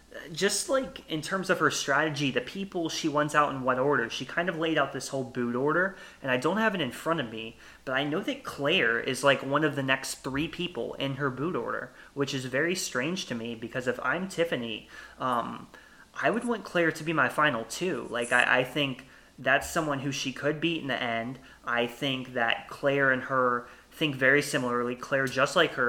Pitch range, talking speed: 125-150 Hz, 225 wpm